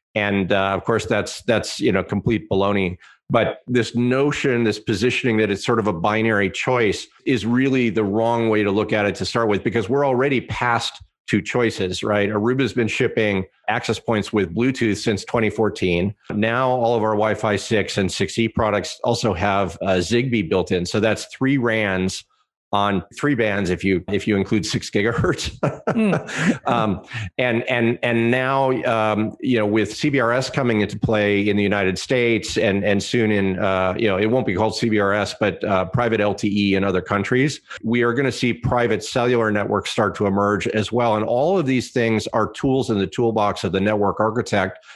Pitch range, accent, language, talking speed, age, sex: 100-120 Hz, American, English, 190 wpm, 40-59, male